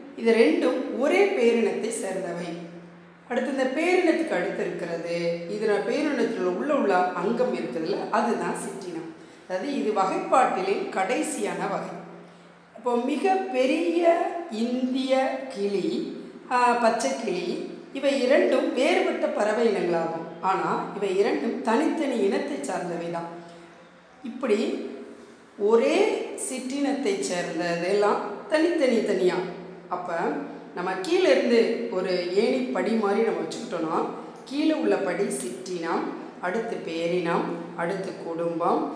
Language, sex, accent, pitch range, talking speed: Tamil, female, native, 180-285 Hz, 100 wpm